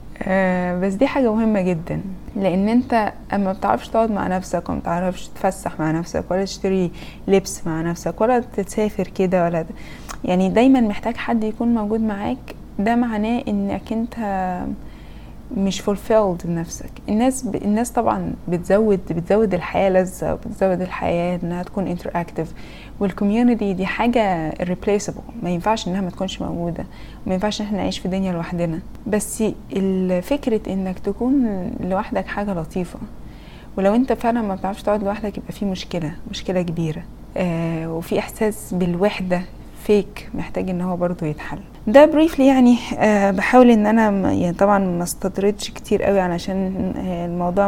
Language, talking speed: Arabic, 145 wpm